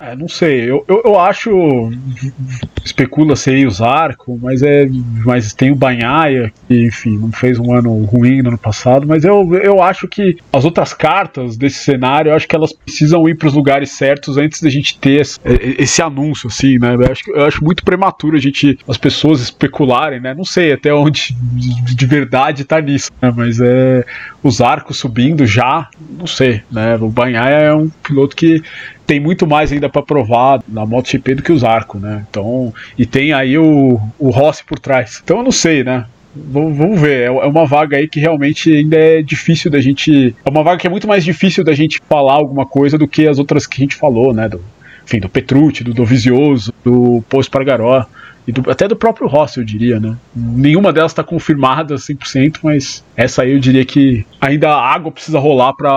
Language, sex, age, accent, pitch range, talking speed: Portuguese, male, 20-39, Brazilian, 125-155 Hz, 205 wpm